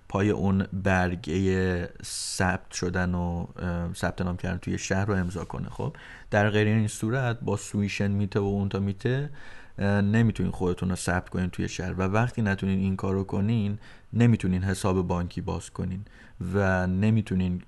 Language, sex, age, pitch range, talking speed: Persian, male, 30-49, 90-110 Hz, 155 wpm